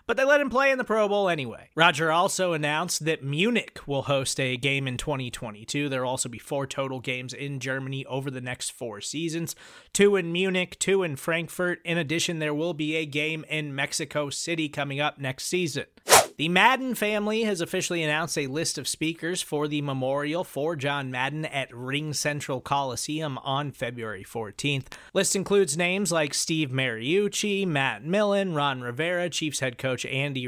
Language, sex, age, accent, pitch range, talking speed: English, male, 30-49, American, 135-180 Hz, 185 wpm